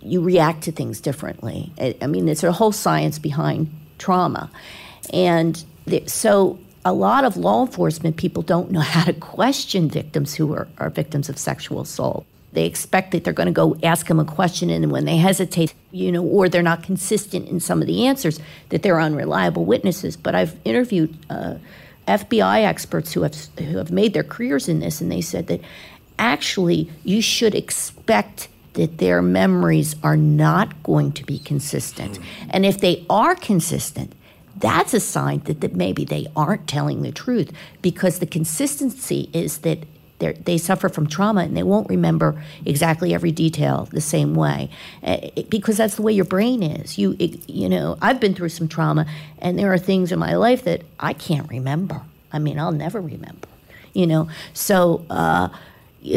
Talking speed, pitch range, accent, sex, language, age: 180 wpm, 155-190 Hz, American, female, English, 50-69